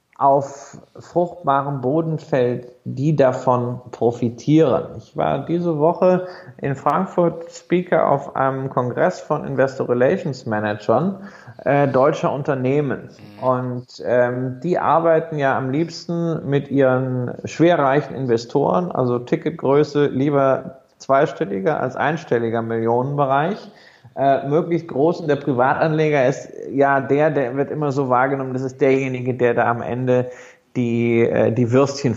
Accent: German